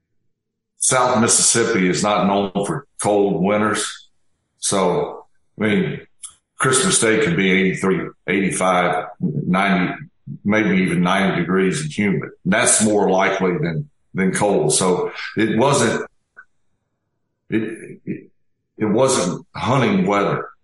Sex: male